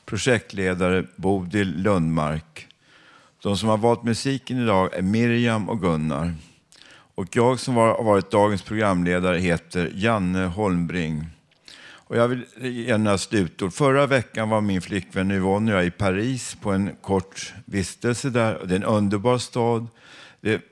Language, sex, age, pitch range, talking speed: Swedish, male, 60-79, 90-110 Hz, 135 wpm